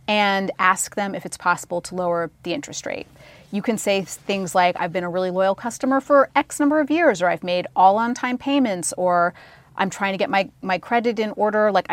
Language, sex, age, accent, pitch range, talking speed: English, female, 30-49, American, 175-230 Hz, 215 wpm